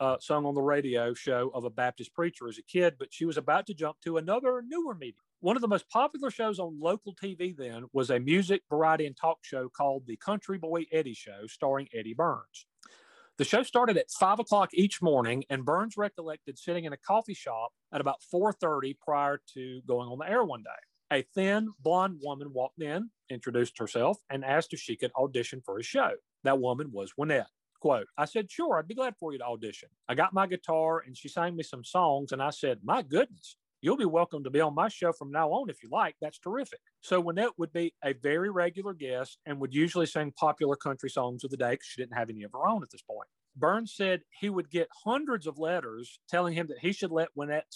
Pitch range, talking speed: 135-190 Hz, 230 wpm